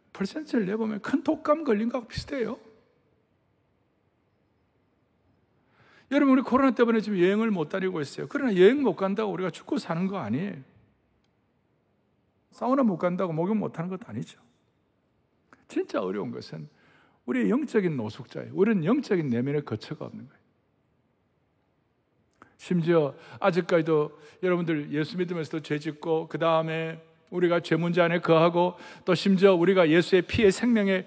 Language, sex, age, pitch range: Korean, male, 60-79, 160-210 Hz